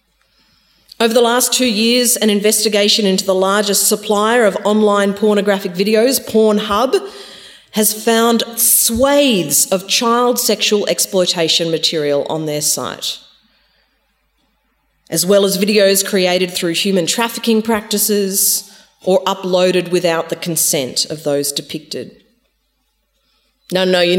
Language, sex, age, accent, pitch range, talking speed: English, female, 40-59, Australian, 180-230 Hz, 115 wpm